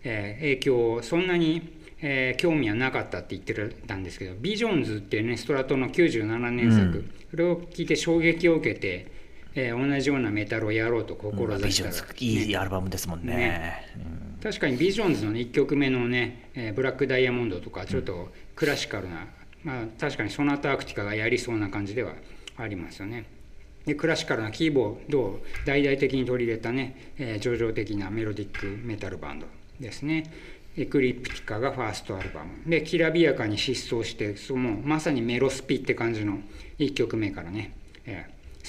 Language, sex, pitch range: Japanese, male, 105-145 Hz